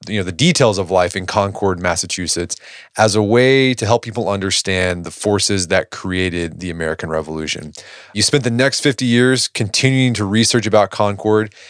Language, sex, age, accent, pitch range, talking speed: English, male, 30-49, American, 90-115 Hz, 175 wpm